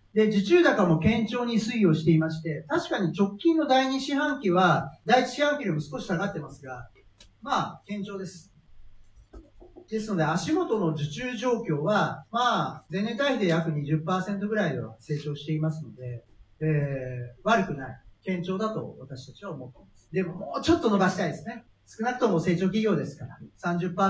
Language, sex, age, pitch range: Japanese, male, 40-59, 150-215 Hz